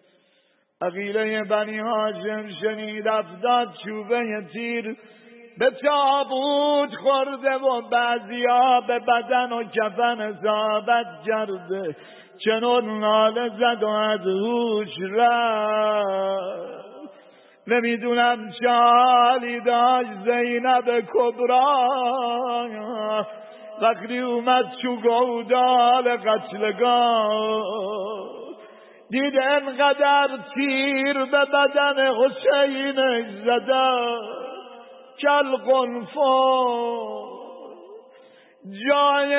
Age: 50-69